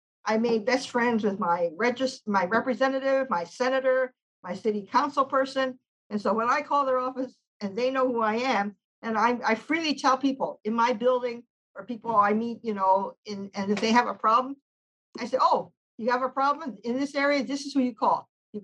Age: 50-69